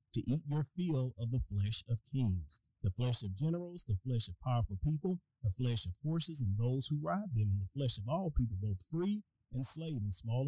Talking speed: 225 wpm